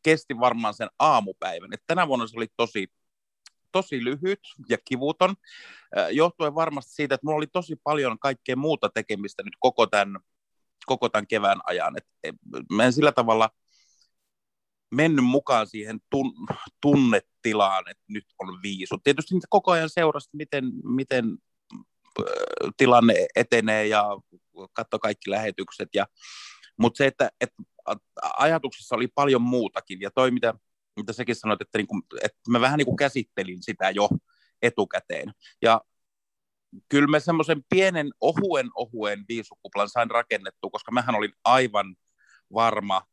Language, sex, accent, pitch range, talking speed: Finnish, male, native, 110-150 Hz, 130 wpm